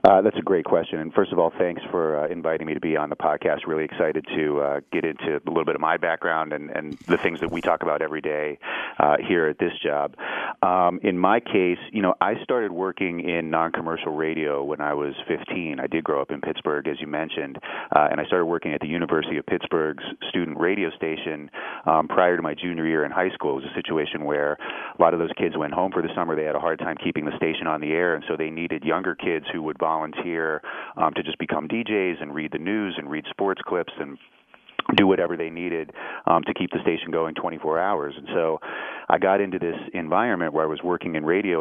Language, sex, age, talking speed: English, male, 30-49, 240 wpm